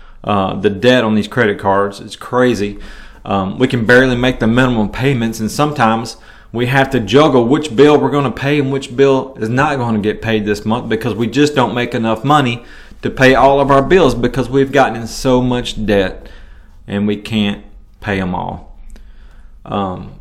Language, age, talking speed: English, 30-49, 200 wpm